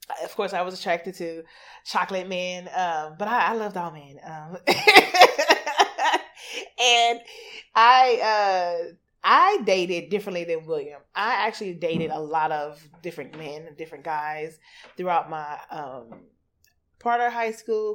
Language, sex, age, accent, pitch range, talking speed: English, female, 30-49, American, 170-225 Hz, 135 wpm